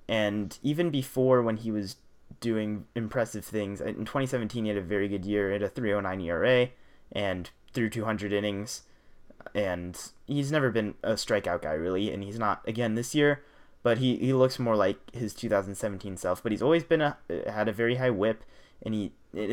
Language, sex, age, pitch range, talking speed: English, male, 20-39, 105-130 Hz, 205 wpm